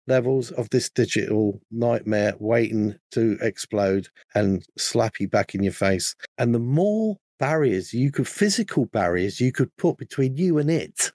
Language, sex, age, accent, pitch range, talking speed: English, male, 50-69, British, 115-165 Hz, 160 wpm